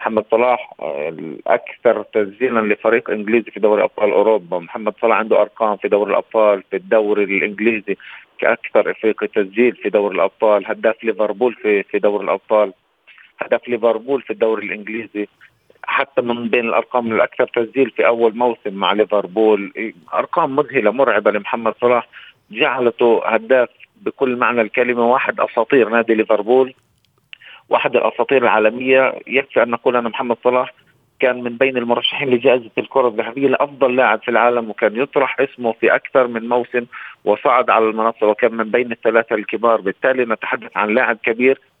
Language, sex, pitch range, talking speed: Arabic, male, 110-125 Hz, 150 wpm